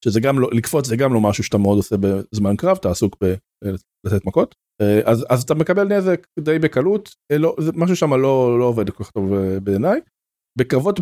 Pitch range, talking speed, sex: 110-155 Hz, 185 wpm, male